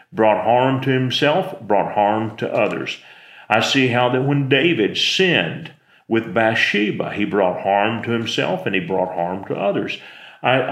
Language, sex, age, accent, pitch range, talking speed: English, male, 40-59, American, 115-145 Hz, 160 wpm